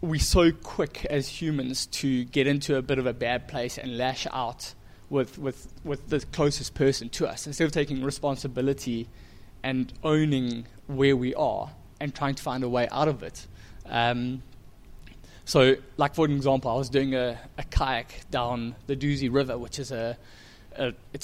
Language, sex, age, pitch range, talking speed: English, male, 20-39, 120-140 Hz, 175 wpm